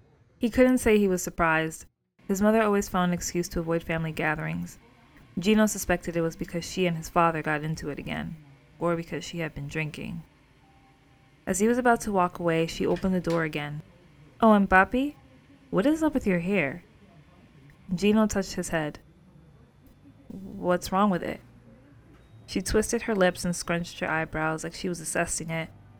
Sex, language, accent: female, English, American